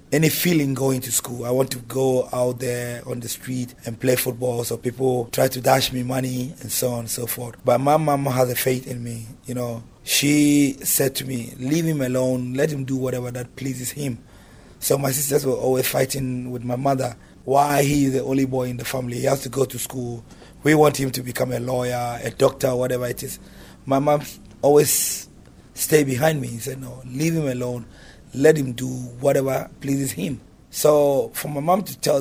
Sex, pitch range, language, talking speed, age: male, 125-140 Hz, English, 210 wpm, 30-49